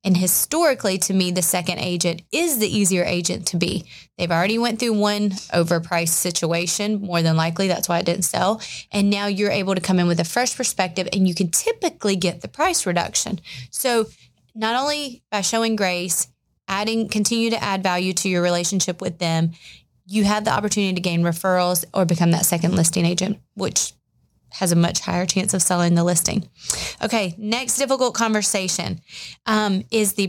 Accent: American